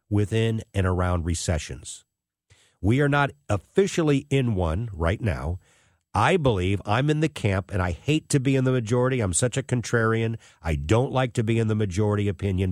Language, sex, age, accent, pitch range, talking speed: English, male, 50-69, American, 95-130 Hz, 185 wpm